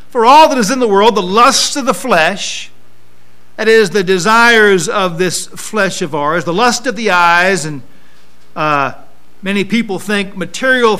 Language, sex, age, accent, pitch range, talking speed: English, male, 50-69, American, 155-245 Hz, 175 wpm